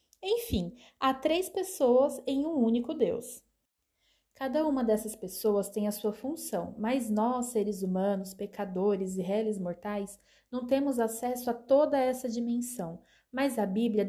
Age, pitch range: 20-39, 195-250 Hz